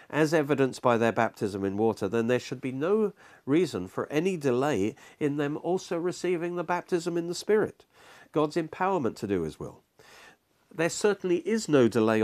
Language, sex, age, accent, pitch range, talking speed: English, male, 50-69, British, 115-170 Hz, 175 wpm